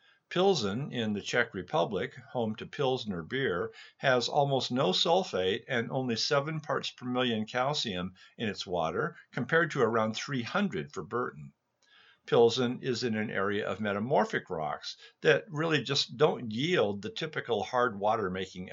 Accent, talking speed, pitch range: American, 145 wpm, 110-135 Hz